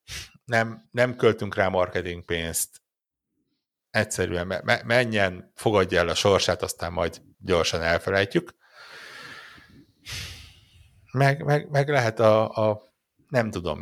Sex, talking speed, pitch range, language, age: male, 100 wpm, 90-115 Hz, Hungarian, 60-79